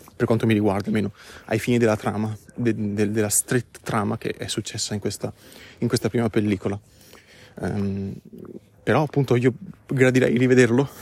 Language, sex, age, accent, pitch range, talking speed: Italian, male, 20-39, native, 105-130 Hz, 160 wpm